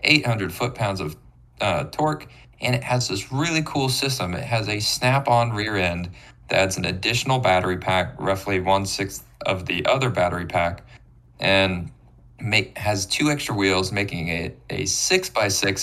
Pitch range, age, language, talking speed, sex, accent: 95-125 Hz, 20-39, English, 165 wpm, male, American